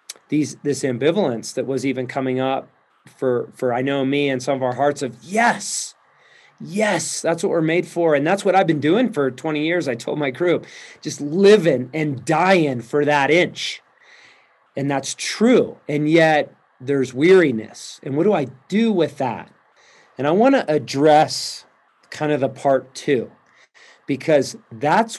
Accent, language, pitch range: American, English, 130-160 Hz